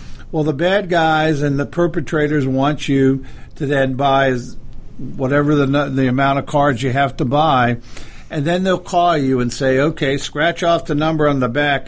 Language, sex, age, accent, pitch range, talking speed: English, male, 50-69, American, 130-160 Hz, 185 wpm